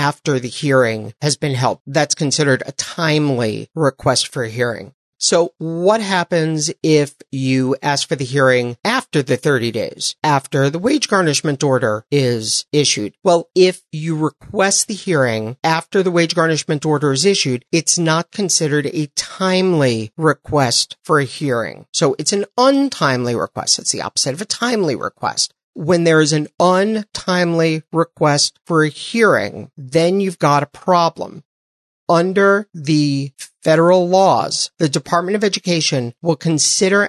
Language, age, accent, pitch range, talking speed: English, 50-69, American, 140-175 Hz, 150 wpm